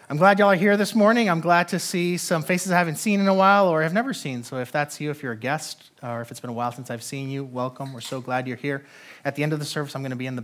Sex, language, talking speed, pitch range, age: male, English, 340 wpm, 110-160 Hz, 30-49